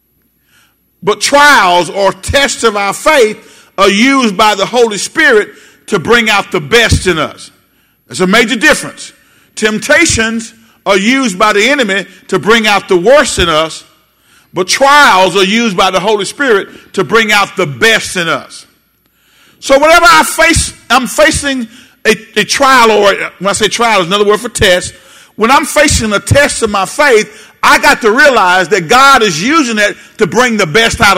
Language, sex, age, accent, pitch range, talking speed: English, male, 50-69, American, 195-285 Hz, 180 wpm